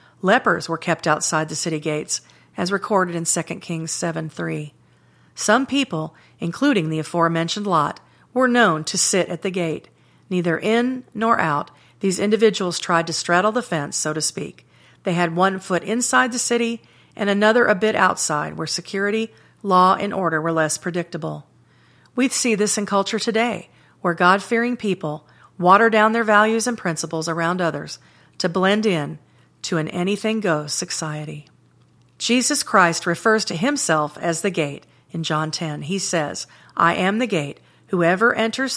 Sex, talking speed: female, 160 wpm